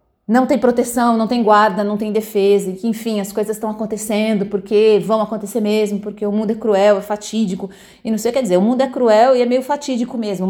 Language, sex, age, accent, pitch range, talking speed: English, female, 30-49, Brazilian, 210-270 Hz, 240 wpm